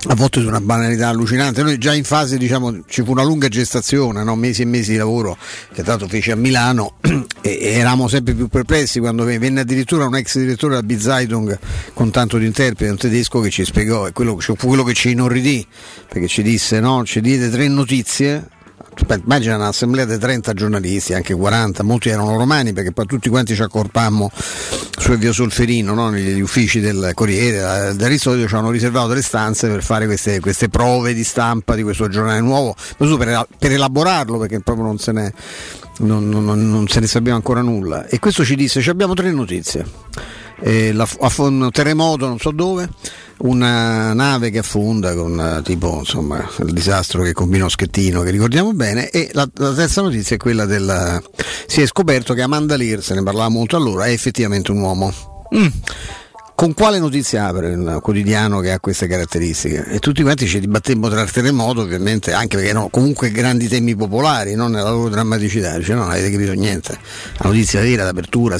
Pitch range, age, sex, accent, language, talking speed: 100-125 Hz, 50-69, male, native, Italian, 190 wpm